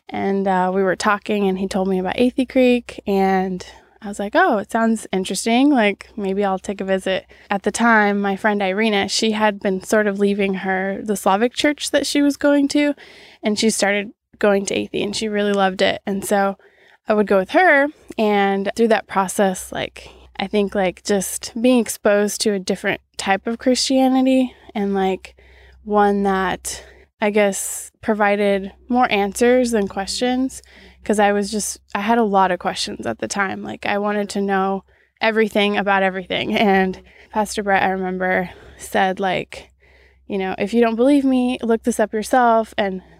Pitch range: 195-230 Hz